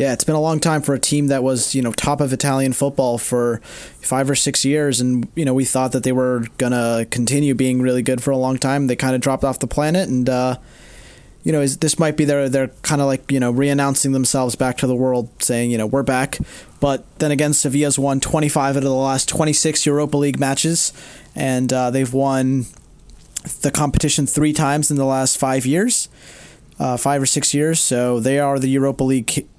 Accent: American